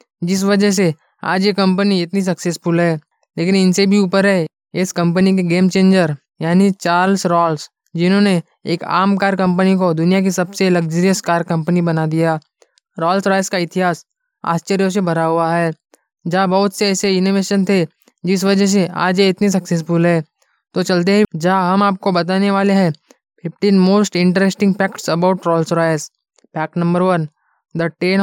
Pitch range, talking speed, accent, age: 170-195 Hz, 170 wpm, native, 20-39